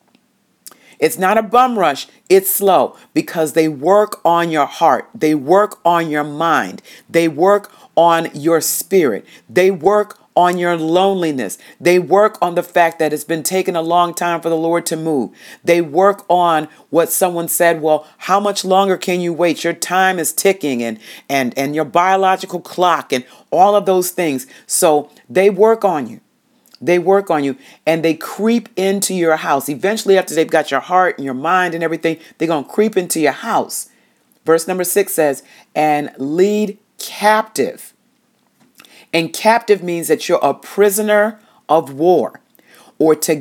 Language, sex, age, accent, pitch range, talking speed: English, female, 40-59, American, 160-200 Hz, 170 wpm